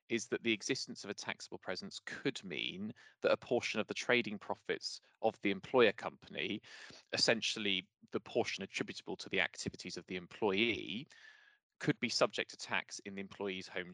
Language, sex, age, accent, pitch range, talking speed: English, male, 20-39, British, 100-125 Hz, 170 wpm